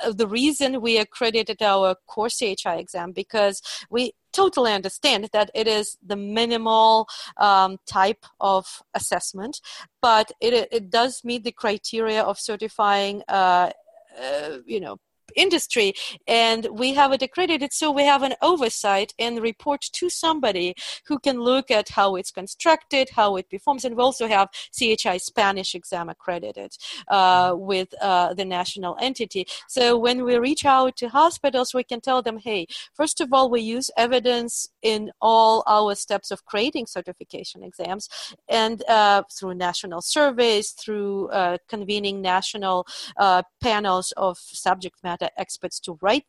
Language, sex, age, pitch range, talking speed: English, female, 40-59, 200-265 Hz, 150 wpm